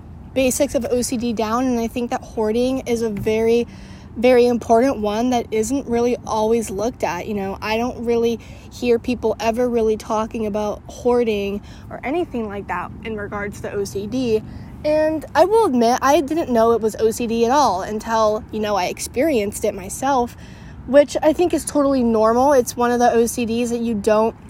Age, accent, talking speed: 20-39, American, 180 wpm